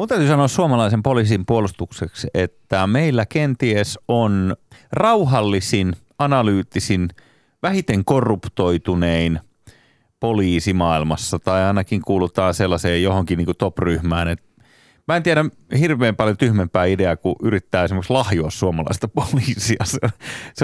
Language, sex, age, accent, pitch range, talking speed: Finnish, male, 30-49, native, 95-130 Hz, 110 wpm